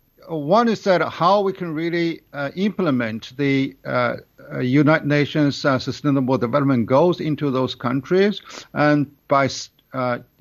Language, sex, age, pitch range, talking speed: English, male, 50-69, 130-155 Hz, 140 wpm